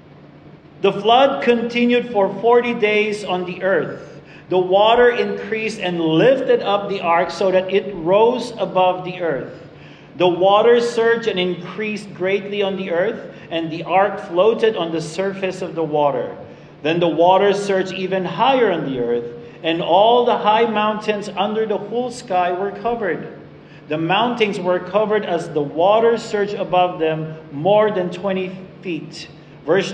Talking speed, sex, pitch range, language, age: 155 wpm, male, 165-205 Hz, English, 40-59